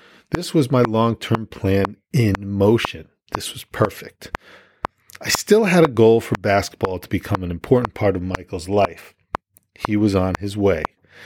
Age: 40-59